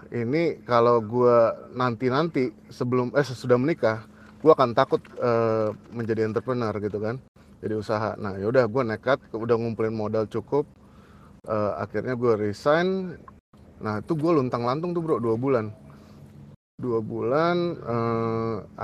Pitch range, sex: 115-140 Hz, male